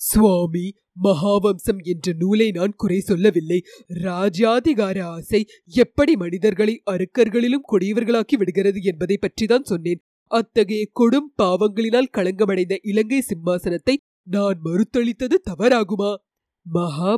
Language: Tamil